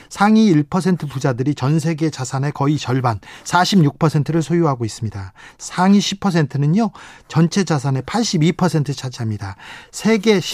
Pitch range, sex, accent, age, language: 135-185 Hz, male, native, 40-59, Korean